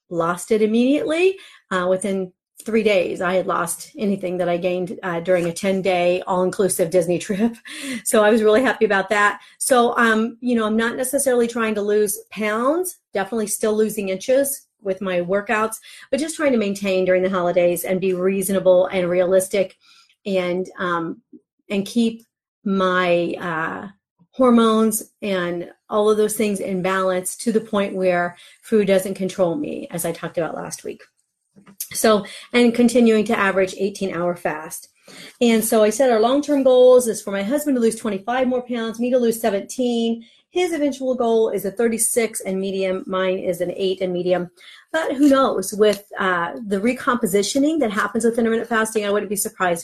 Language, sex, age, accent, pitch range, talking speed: English, female, 40-59, American, 185-235 Hz, 175 wpm